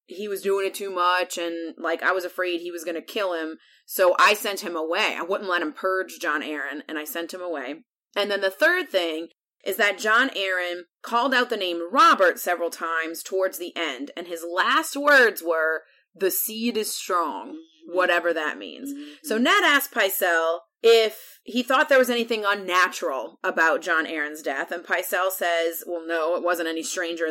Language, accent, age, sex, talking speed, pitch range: English, American, 30-49, female, 195 wpm, 165-205 Hz